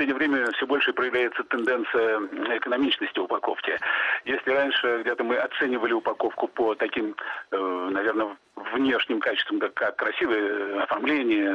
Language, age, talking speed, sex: Russian, 40-59, 120 wpm, male